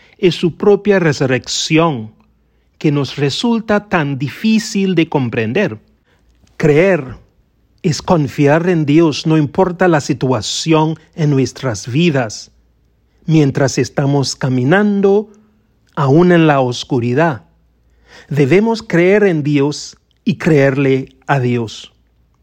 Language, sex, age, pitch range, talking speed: English, male, 40-59, 135-190 Hz, 100 wpm